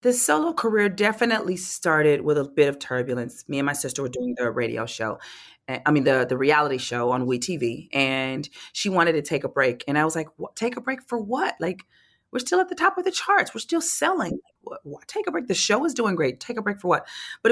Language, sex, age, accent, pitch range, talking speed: English, female, 30-49, American, 135-170 Hz, 235 wpm